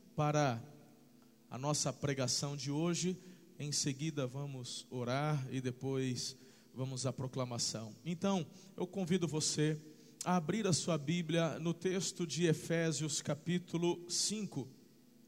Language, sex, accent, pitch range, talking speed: Portuguese, male, Brazilian, 150-195 Hz, 120 wpm